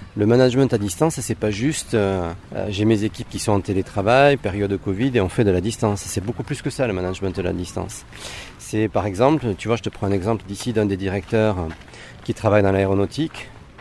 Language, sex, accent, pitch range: French, male, French, 100-125 Hz